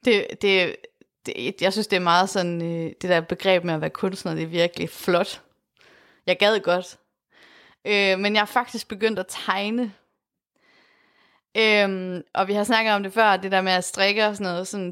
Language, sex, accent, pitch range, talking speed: Danish, female, native, 185-240 Hz, 195 wpm